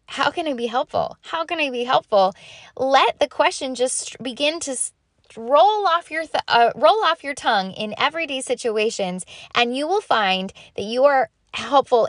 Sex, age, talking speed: female, 10-29, 175 wpm